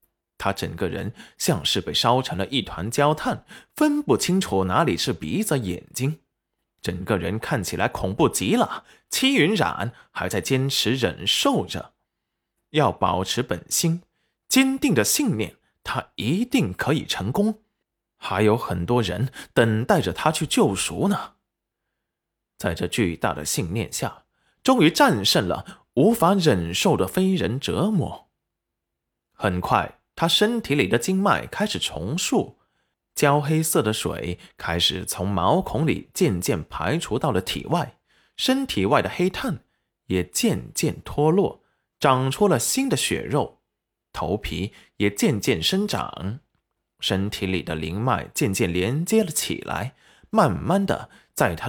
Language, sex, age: Chinese, male, 20-39